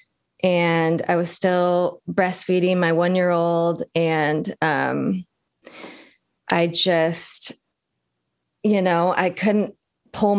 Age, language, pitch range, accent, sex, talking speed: 20-39, English, 170-200 Hz, American, female, 105 wpm